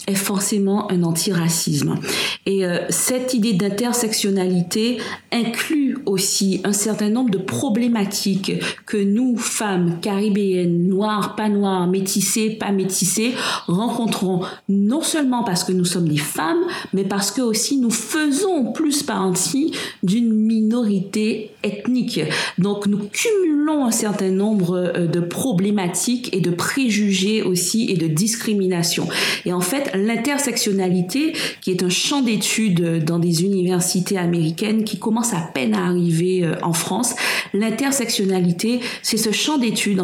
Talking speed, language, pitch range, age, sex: 130 wpm, French, 185-230 Hz, 50-69, female